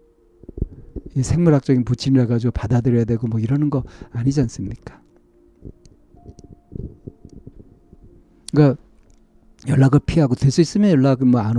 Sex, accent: male, native